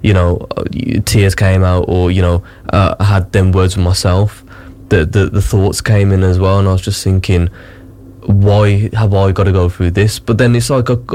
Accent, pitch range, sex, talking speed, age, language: British, 95-110 Hz, male, 215 wpm, 10-29, English